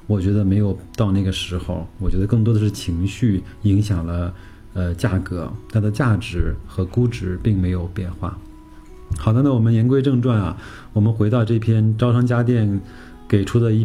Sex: male